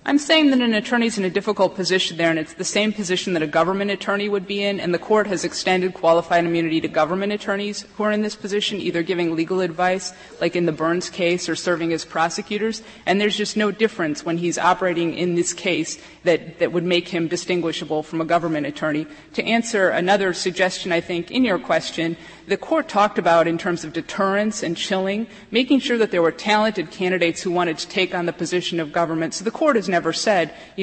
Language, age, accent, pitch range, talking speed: English, 30-49, American, 170-210 Hz, 220 wpm